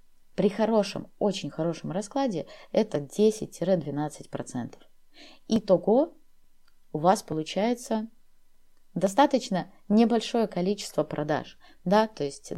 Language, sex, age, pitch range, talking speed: Russian, female, 20-39, 165-220 Hz, 85 wpm